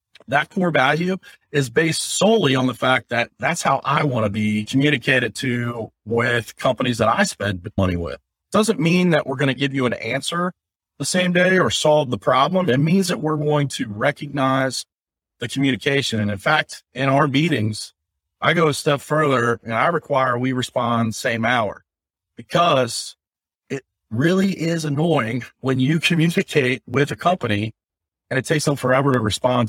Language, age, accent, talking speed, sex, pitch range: English, 40-59, American, 180 wpm, male, 115-150 Hz